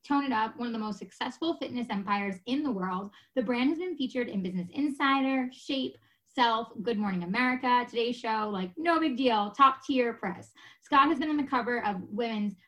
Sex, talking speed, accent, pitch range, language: female, 205 wpm, American, 210-265 Hz, English